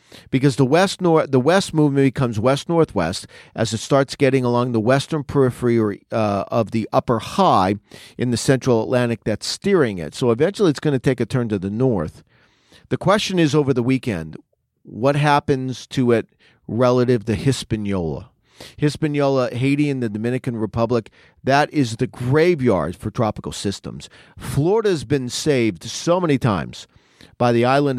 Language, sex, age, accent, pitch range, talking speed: English, male, 40-59, American, 110-145 Hz, 165 wpm